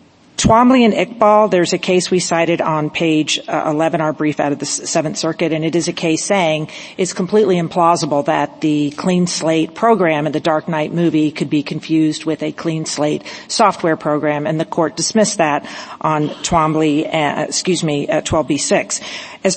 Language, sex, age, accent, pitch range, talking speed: English, female, 50-69, American, 160-200 Hz, 185 wpm